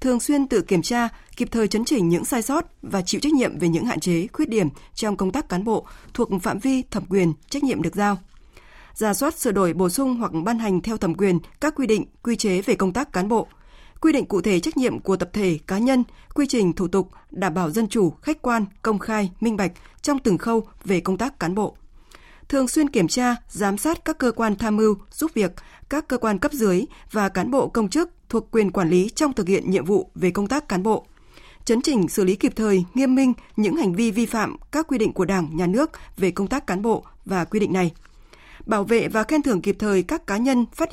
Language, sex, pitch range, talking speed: Vietnamese, female, 190-250 Hz, 245 wpm